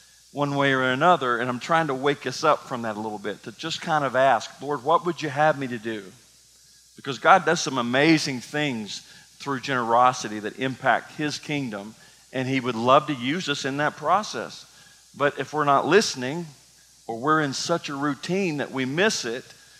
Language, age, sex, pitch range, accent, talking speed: English, 40-59, male, 130-165 Hz, American, 200 wpm